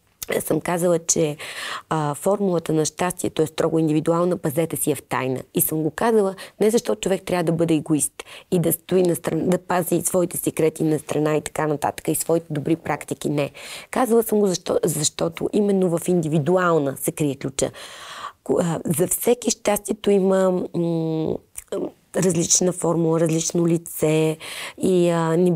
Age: 30-49